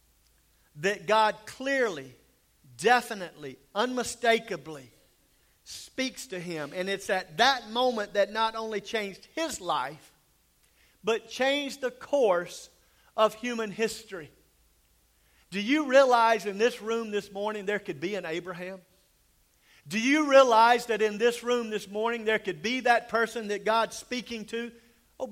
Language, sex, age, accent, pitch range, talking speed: English, male, 50-69, American, 190-235 Hz, 135 wpm